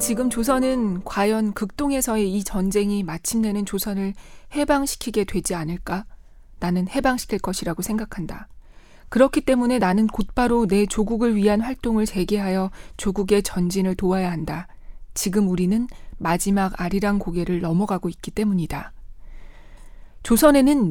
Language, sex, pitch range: Korean, female, 185-230 Hz